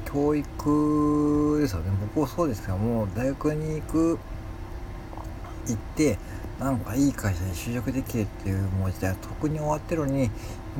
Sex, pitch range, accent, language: male, 105-135 Hz, native, Japanese